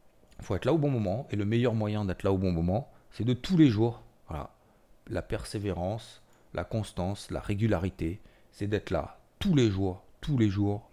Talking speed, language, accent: 205 wpm, French, French